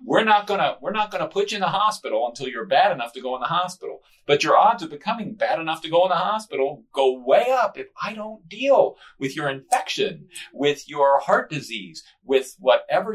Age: 40-59